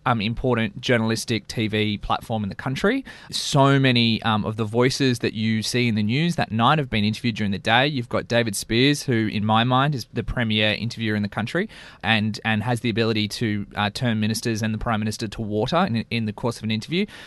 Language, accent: English, Australian